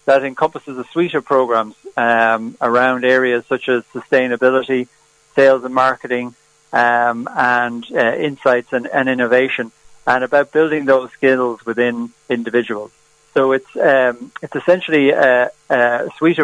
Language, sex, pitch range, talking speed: English, male, 120-135 Hz, 135 wpm